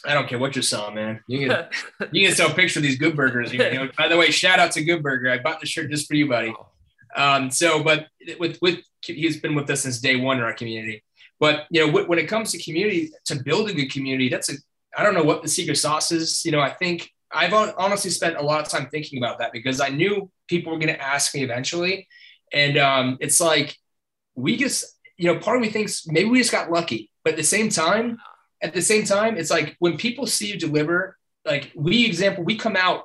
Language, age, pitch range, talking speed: English, 20-39, 140-170 Hz, 250 wpm